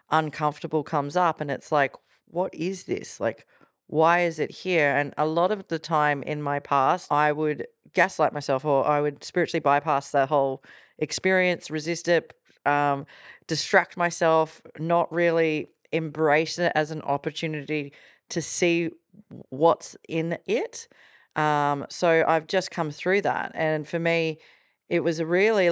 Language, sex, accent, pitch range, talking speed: English, female, Australian, 150-175 Hz, 150 wpm